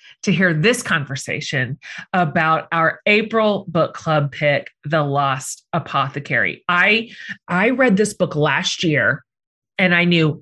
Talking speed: 130 wpm